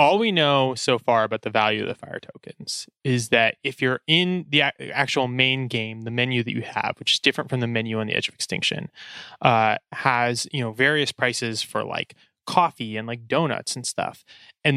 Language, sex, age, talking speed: English, male, 20-39, 210 wpm